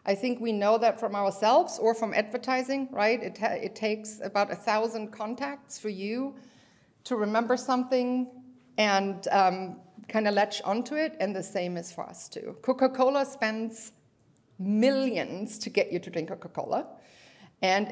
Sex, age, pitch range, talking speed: female, 50-69, 185-240 Hz, 155 wpm